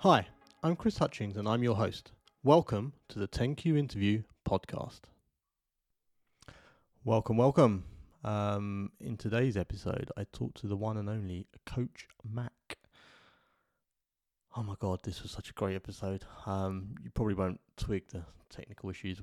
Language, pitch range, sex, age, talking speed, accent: English, 90-110 Hz, male, 20-39, 145 wpm, British